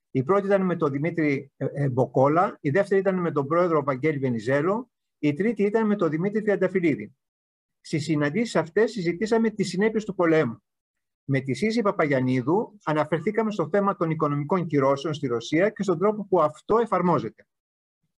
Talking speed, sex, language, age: 160 wpm, male, Greek, 50-69